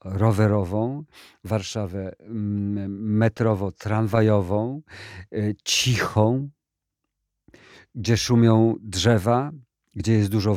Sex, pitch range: male, 95-110 Hz